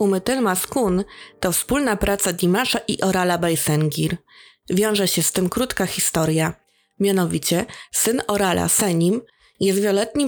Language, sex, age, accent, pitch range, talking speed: Polish, female, 20-39, native, 180-230 Hz, 125 wpm